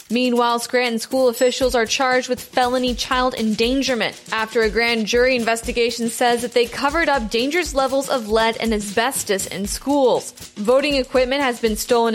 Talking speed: 165 wpm